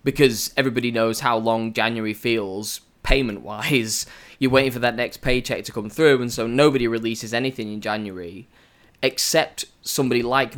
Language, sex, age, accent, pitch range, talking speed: English, male, 10-29, British, 110-135 Hz, 155 wpm